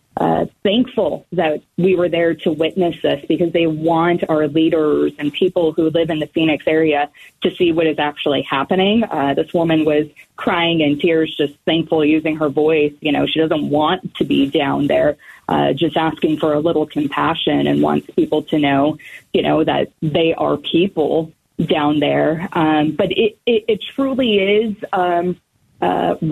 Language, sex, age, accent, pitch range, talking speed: English, female, 20-39, American, 155-185 Hz, 180 wpm